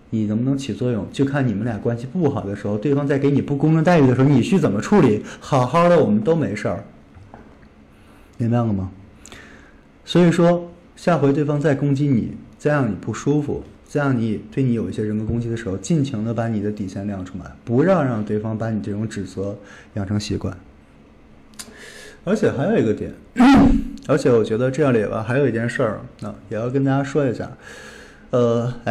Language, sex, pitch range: Chinese, male, 100-145 Hz